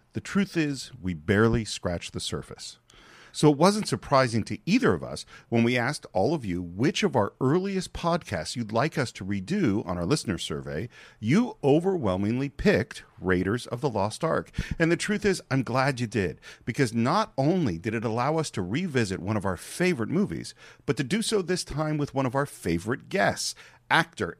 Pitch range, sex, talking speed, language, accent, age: 105-155 Hz, male, 195 wpm, English, American, 50-69